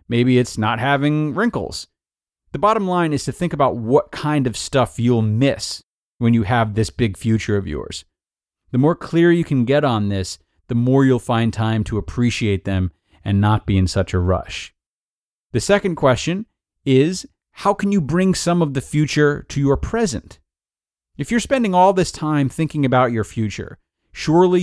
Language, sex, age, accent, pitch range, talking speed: English, male, 30-49, American, 105-160 Hz, 185 wpm